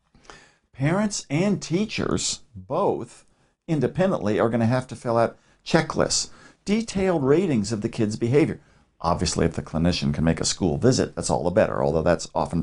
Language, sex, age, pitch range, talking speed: English, male, 60-79, 95-130 Hz, 165 wpm